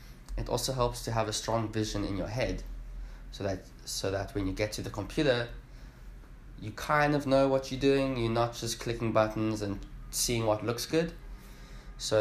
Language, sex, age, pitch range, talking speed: English, male, 20-39, 100-125 Hz, 190 wpm